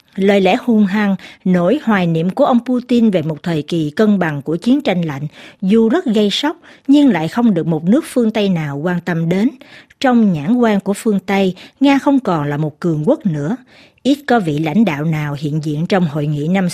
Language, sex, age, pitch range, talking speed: Vietnamese, female, 60-79, 170-235 Hz, 220 wpm